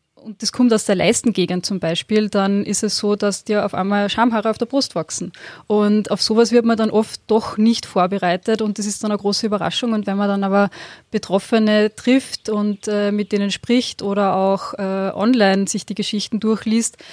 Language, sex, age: German, female, 20-39